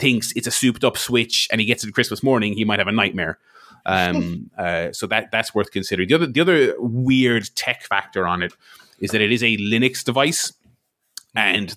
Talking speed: 205 wpm